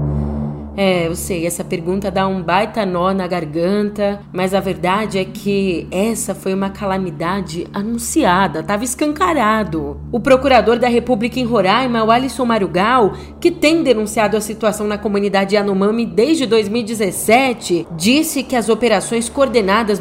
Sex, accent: female, Brazilian